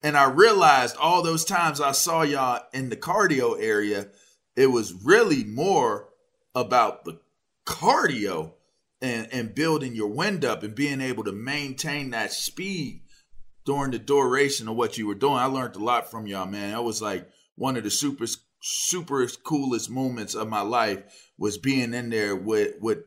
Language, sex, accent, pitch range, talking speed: English, male, American, 120-155 Hz, 175 wpm